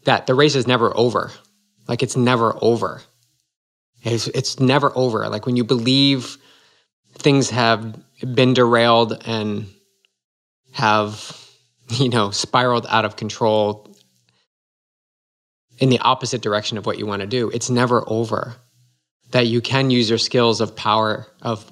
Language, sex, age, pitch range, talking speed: English, male, 20-39, 110-125 Hz, 145 wpm